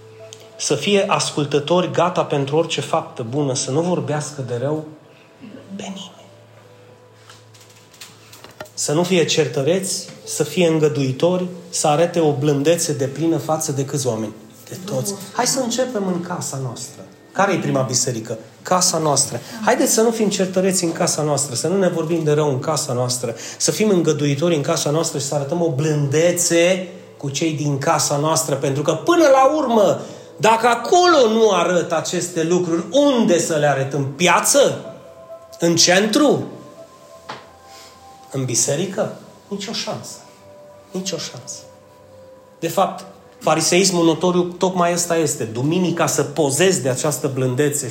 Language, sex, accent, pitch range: Romanian, male, native, 140-180 Hz